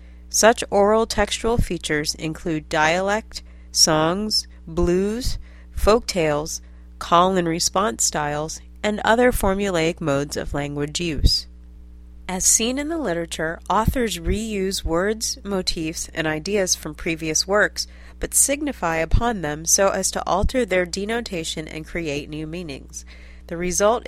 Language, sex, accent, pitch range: English, female, American, 150-195 Hz